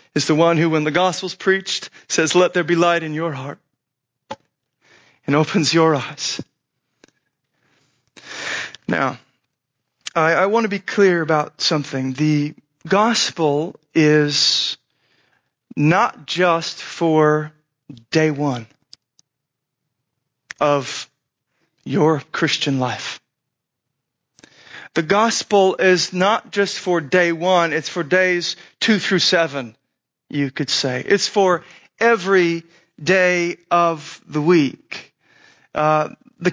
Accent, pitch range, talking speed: American, 150-205 Hz, 110 wpm